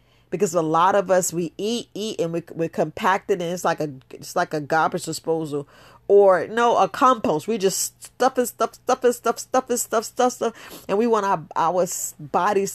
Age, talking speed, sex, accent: 40-59, 210 wpm, female, American